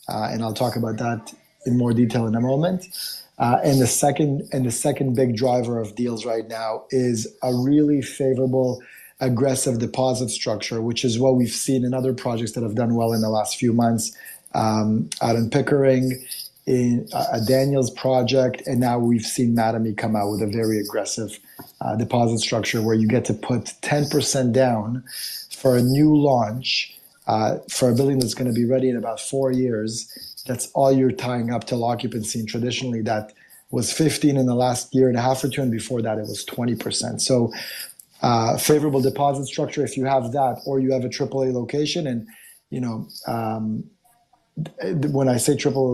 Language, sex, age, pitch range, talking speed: English, male, 30-49, 115-135 Hz, 195 wpm